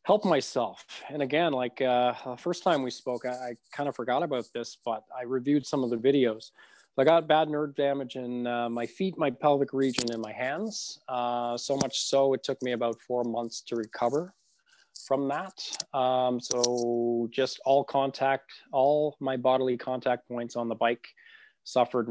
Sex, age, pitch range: male, 20-39, 115-140 Hz